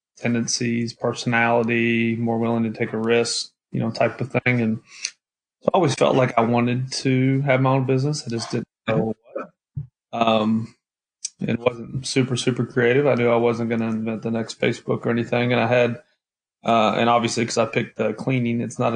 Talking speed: 195 wpm